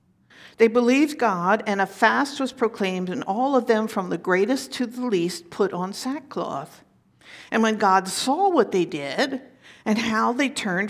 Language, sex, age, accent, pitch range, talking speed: English, female, 50-69, American, 195-280 Hz, 175 wpm